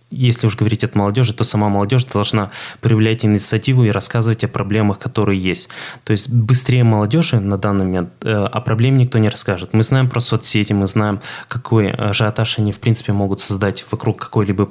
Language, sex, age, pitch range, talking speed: Russian, male, 20-39, 100-120 Hz, 185 wpm